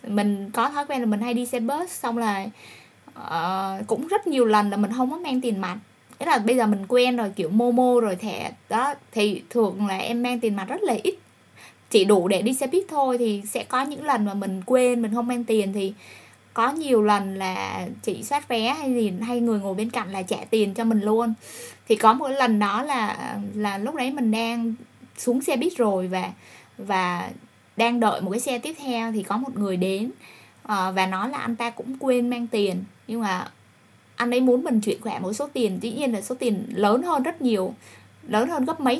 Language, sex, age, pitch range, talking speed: Vietnamese, female, 20-39, 210-255 Hz, 230 wpm